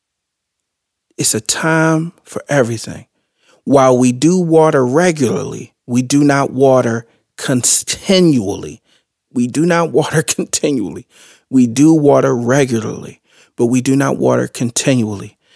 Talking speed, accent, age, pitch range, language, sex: 115 wpm, American, 40-59, 130-165 Hz, English, male